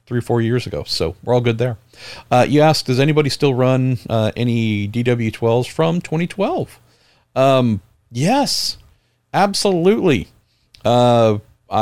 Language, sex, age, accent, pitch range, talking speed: English, male, 40-59, American, 110-135 Hz, 135 wpm